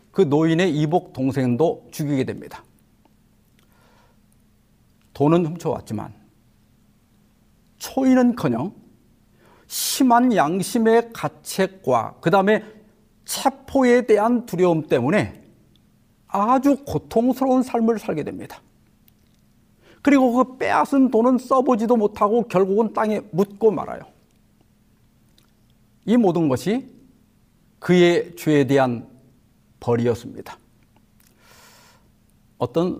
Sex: male